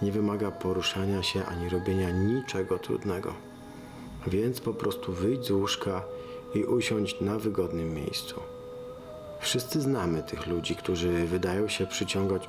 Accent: native